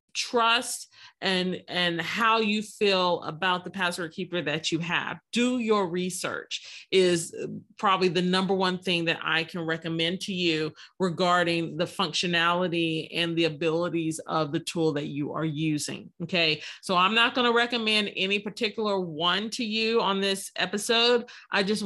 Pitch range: 170-210 Hz